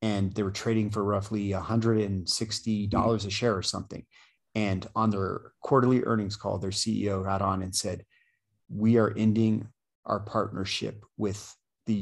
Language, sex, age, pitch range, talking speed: English, male, 40-59, 100-115 Hz, 150 wpm